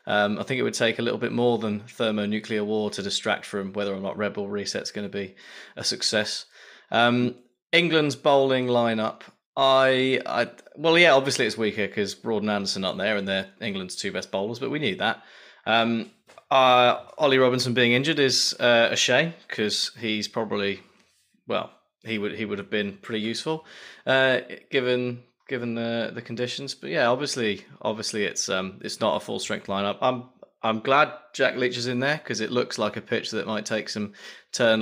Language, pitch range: English, 105-125 Hz